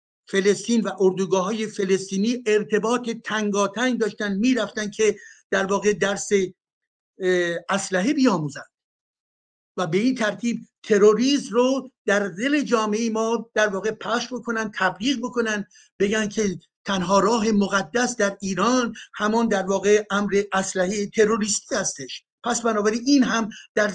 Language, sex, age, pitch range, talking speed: Persian, male, 60-79, 195-230 Hz, 130 wpm